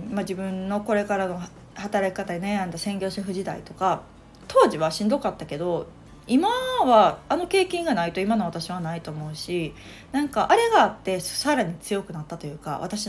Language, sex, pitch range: Japanese, female, 175-235 Hz